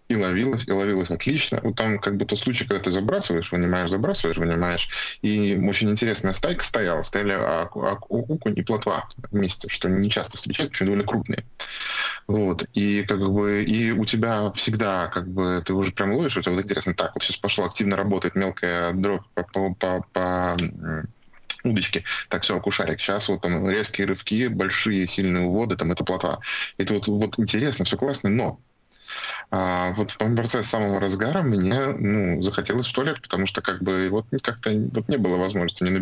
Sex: male